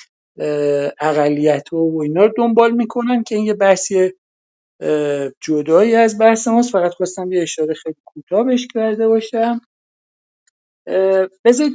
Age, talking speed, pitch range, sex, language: 50-69, 125 wpm, 150-205 Hz, male, Persian